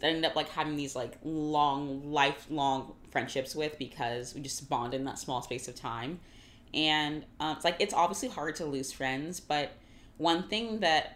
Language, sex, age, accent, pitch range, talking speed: English, female, 20-39, American, 130-155 Hz, 195 wpm